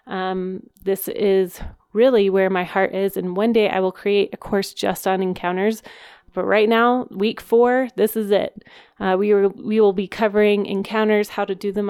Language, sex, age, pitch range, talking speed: English, female, 30-49, 195-230 Hz, 190 wpm